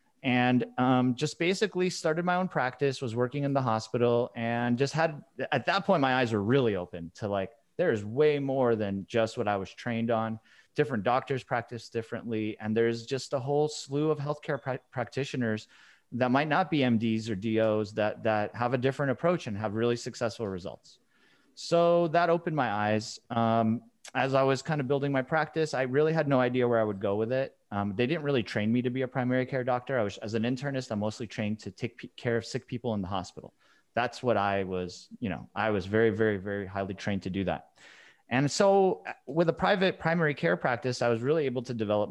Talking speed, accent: 210 wpm, American